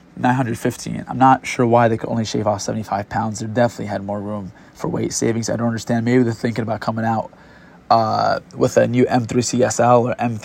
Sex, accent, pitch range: male, American, 115-130 Hz